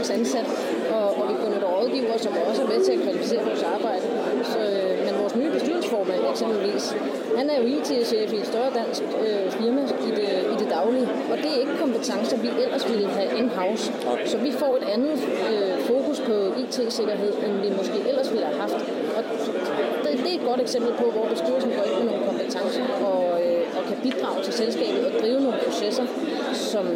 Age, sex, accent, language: 30-49, female, native, Danish